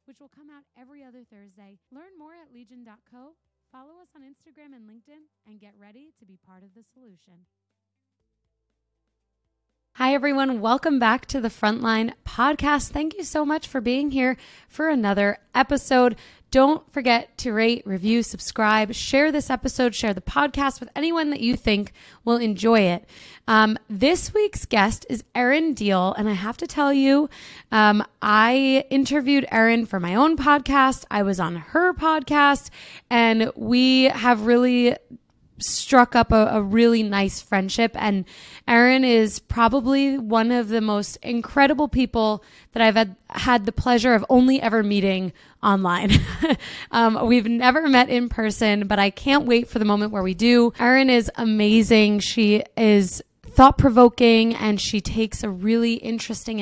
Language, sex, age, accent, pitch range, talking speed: English, female, 20-39, American, 210-265 Hz, 160 wpm